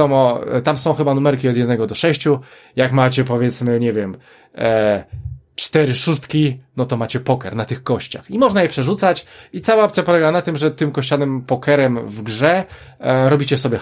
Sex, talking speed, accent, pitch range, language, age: male, 175 wpm, native, 125-160 Hz, Polish, 20-39